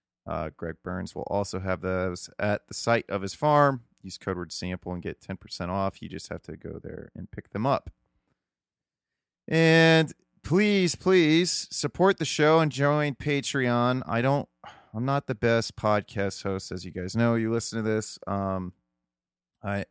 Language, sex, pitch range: English, male, 95-120 Hz